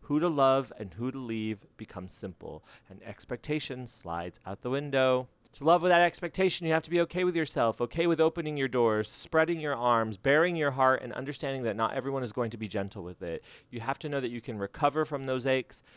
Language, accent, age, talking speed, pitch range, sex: English, American, 30-49, 230 wpm, 110-160 Hz, male